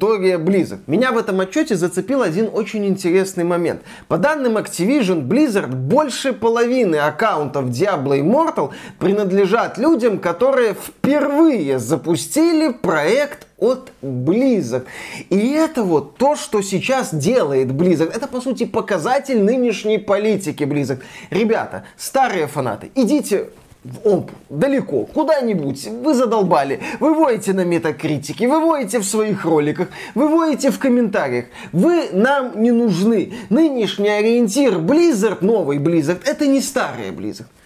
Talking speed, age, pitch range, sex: 125 wpm, 20-39, 180-260 Hz, male